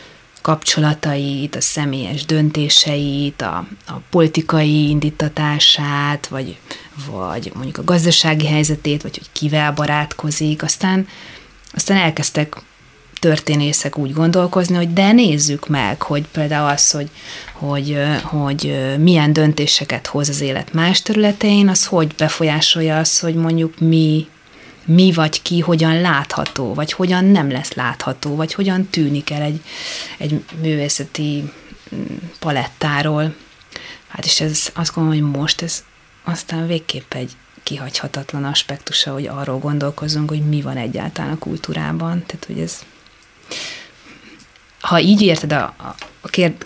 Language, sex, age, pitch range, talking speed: Hungarian, female, 30-49, 145-170 Hz, 120 wpm